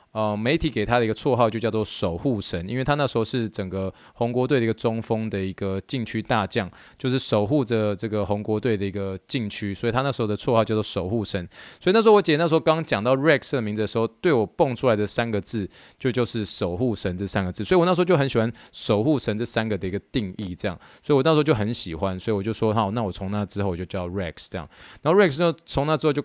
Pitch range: 105-130 Hz